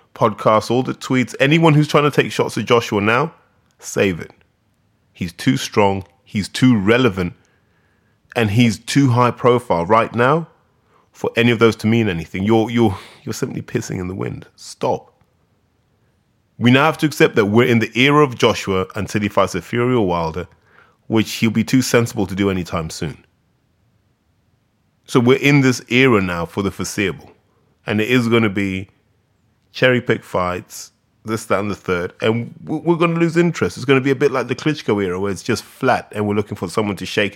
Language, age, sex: English, 20-39, male